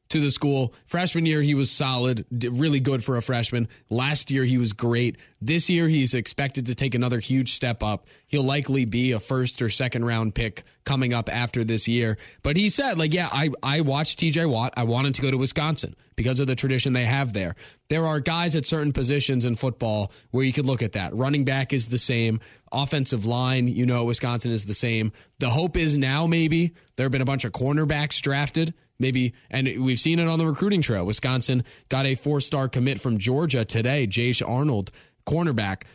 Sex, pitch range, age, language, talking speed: male, 120-150 Hz, 20-39, English, 205 wpm